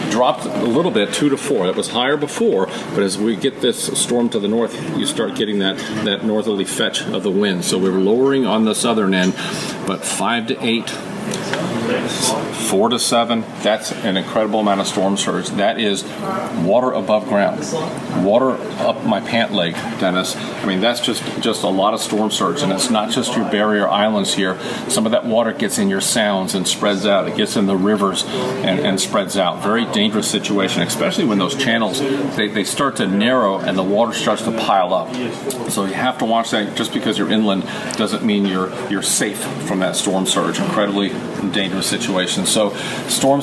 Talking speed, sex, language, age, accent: 200 wpm, male, English, 40-59, American